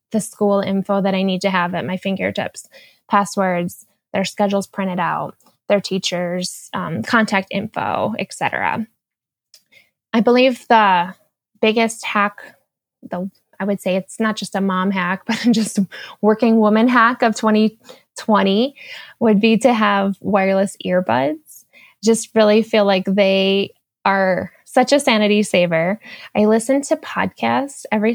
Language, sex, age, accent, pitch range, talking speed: English, female, 10-29, American, 195-230 Hz, 140 wpm